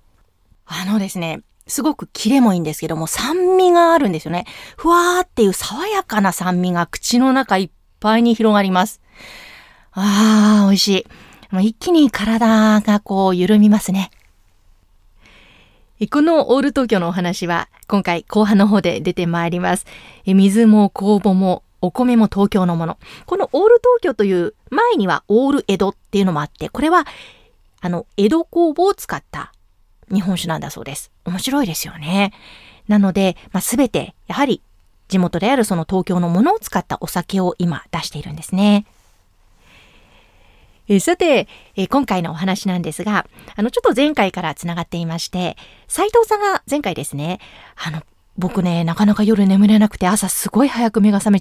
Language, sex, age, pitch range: Japanese, female, 30-49, 175-225 Hz